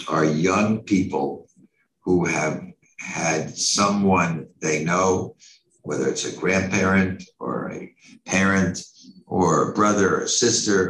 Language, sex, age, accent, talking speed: English, male, 60-79, American, 120 wpm